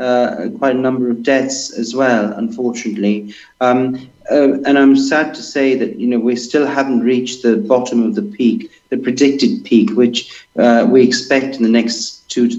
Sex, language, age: male, English, 40-59